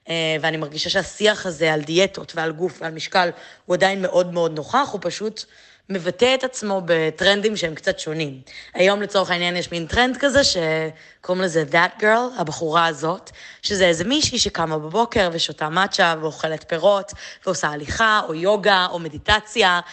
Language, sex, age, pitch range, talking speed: Hebrew, female, 20-39, 165-200 Hz, 155 wpm